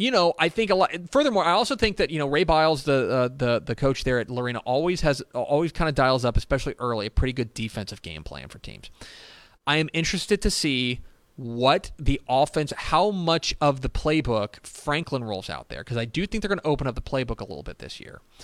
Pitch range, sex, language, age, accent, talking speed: 110-150 Hz, male, English, 30-49, American, 240 wpm